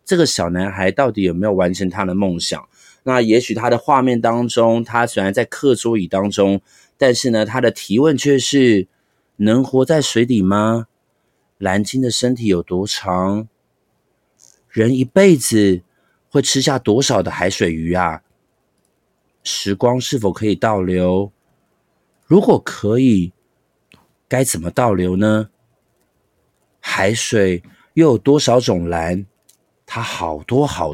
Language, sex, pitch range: Chinese, male, 95-130 Hz